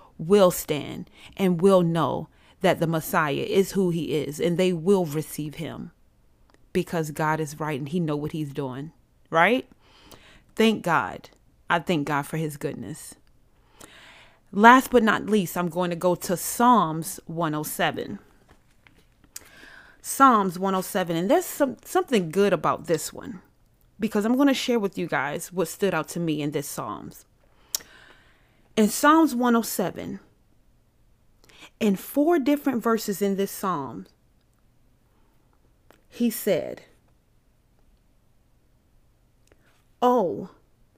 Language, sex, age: English, female, 30-49